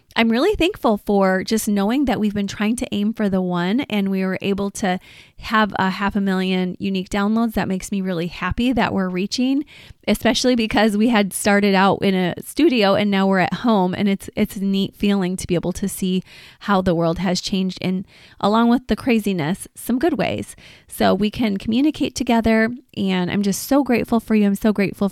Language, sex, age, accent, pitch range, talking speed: English, female, 20-39, American, 190-230 Hz, 210 wpm